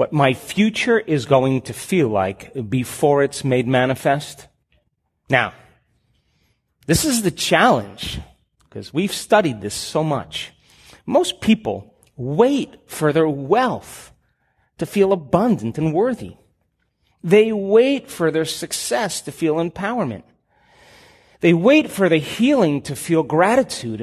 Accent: American